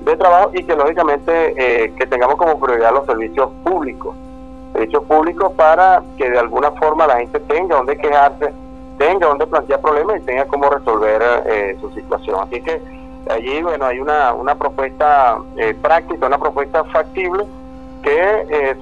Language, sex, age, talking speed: Spanish, male, 40-59, 165 wpm